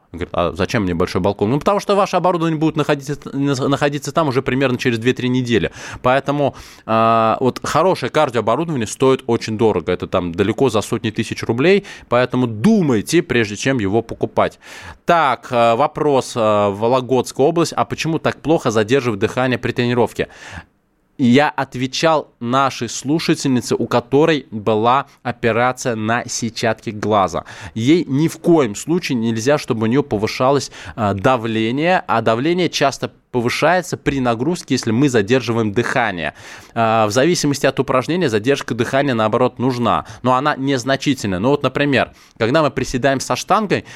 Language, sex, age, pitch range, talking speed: Russian, male, 20-39, 115-145 Hz, 140 wpm